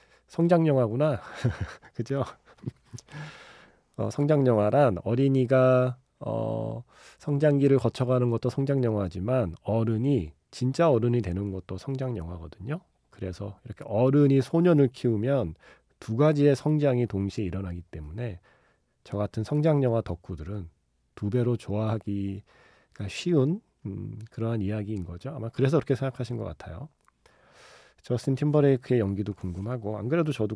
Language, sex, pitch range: Korean, male, 95-135 Hz